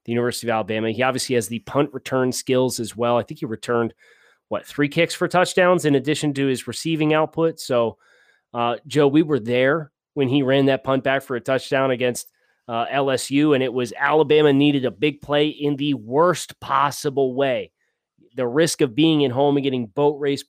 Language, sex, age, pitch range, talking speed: English, male, 30-49, 125-150 Hz, 200 wpm